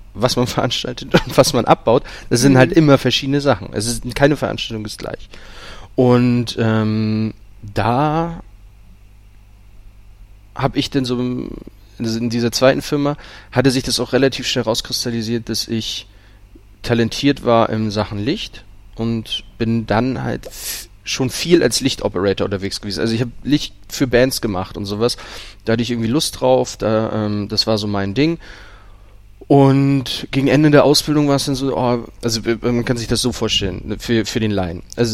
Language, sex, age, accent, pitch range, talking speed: German, male, 30-49, German, 105-125 Hz, 170 wpm